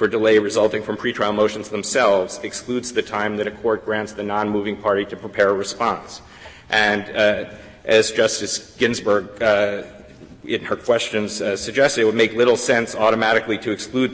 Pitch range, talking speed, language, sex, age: 100-110 Hz, 170 wpm, English, male, 40-59